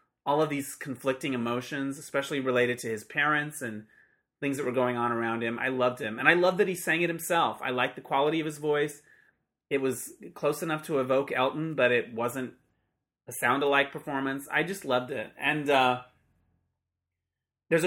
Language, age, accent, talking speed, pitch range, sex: English, 30-49, American, 190 wpm, 125-160 Hz, male